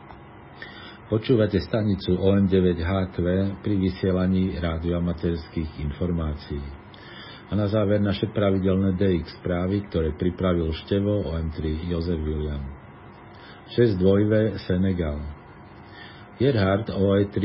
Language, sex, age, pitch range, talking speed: Slovak, male, 50-69, 90-105 Hz, 90 wpm